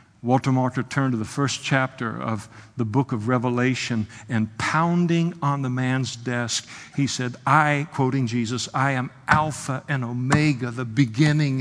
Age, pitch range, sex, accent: 60-79, 125-145 Hz, male, American